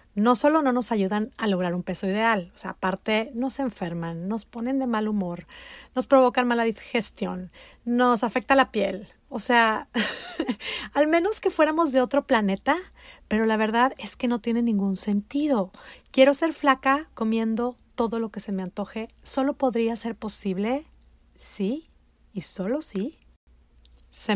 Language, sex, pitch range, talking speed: Spanish, female, 195-255 Hz, 165 wpm